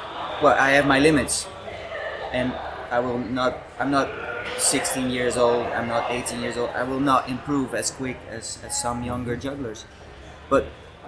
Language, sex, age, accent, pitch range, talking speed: English, male, 20-39, Dutch, 115-145 Hz, 170 wpm